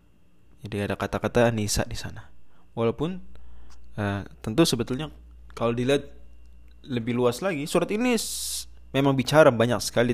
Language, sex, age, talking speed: Indonesian, male, 20-39, 125 wpm